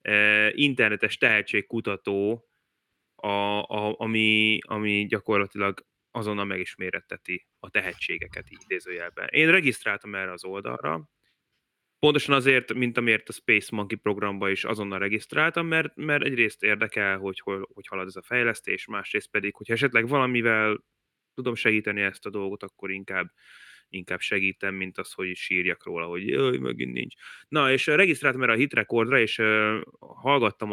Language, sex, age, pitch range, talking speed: Hungarian, male, 20-39, 95-115 Hz, 135 wpm